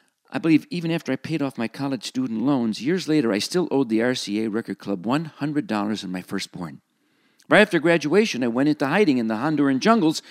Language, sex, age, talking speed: English, male, 50-69, 205 wpm